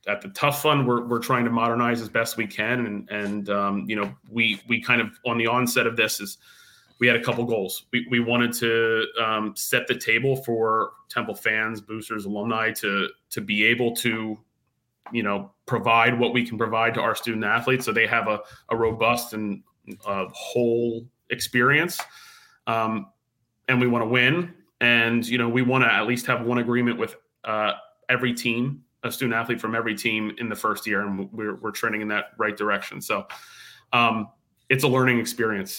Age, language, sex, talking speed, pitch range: 30-49, English, male, 195 wpm, 110-125 Hz